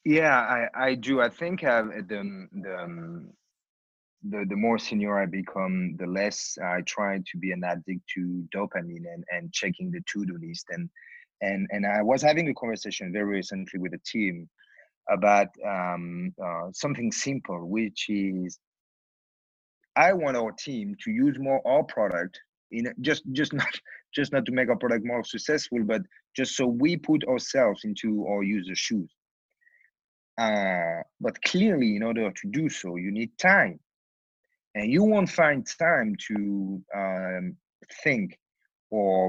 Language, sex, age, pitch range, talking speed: English, male, 30-49, 95-150 Hz, 155 wpm